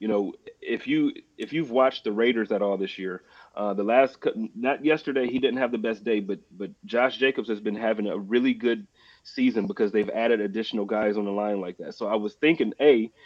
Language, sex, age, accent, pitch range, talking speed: English, male, 30-49, American, 110-140 Hz, 225 wpm